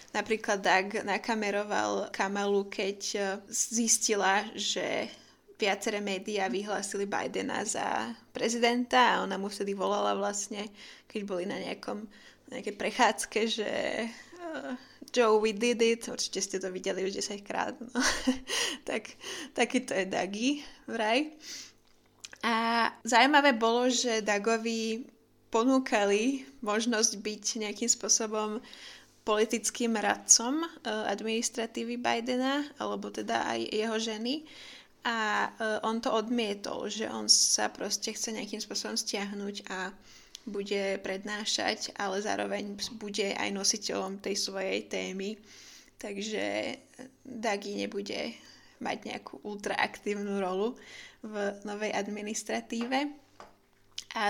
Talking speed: 105 wpm